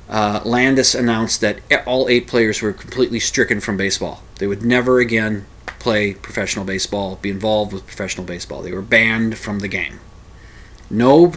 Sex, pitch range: male, 105-125 Hz